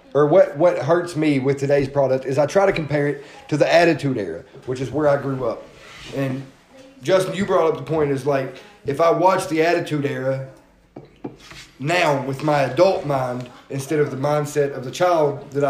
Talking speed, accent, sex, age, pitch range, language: 200 wpm, American, male, 30-49, 140-180 Hz, English